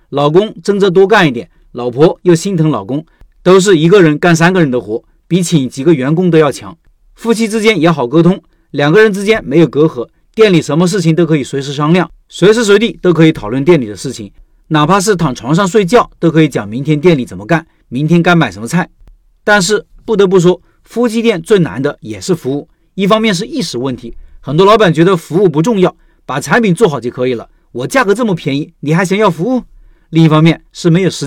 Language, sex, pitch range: Chinese, male, 145-195 Hz